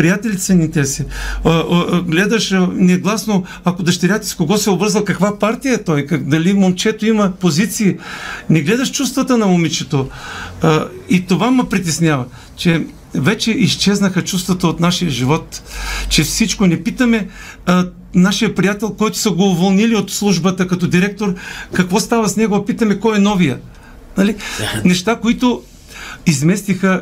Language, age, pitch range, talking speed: Bulgarian, 50-69, 175-220 Hz, 145 wpm